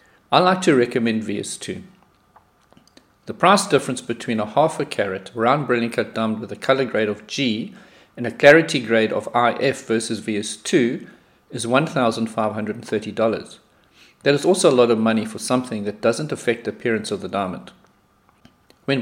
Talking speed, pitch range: 160 wpm, 110-140 Hz